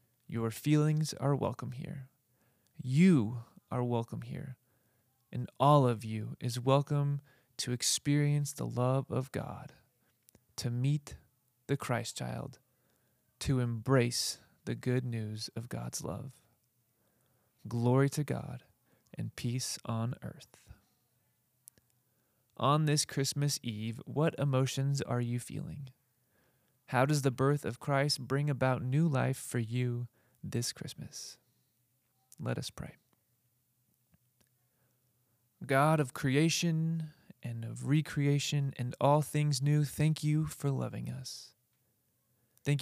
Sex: male